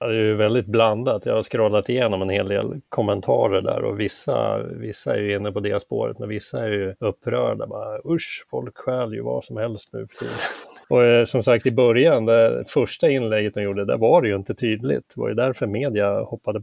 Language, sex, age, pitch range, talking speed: English, male, 30-49, 100-125 Hz, 225 wpm